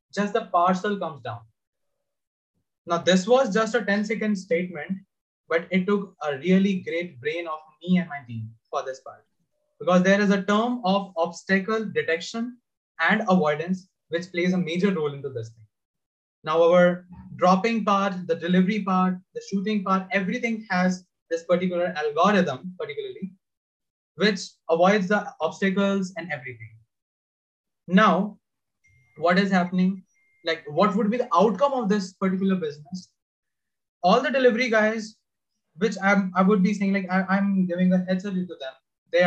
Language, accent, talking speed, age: English, Indian, 155 wpm, 20-39